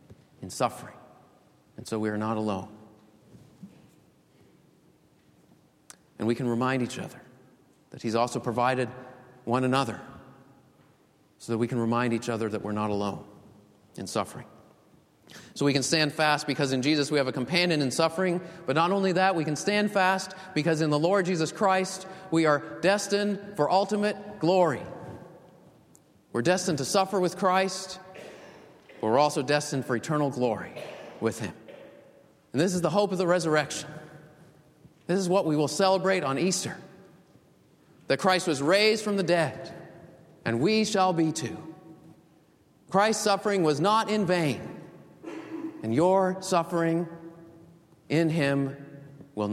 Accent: American